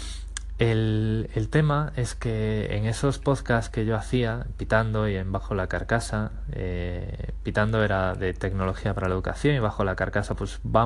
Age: 20-39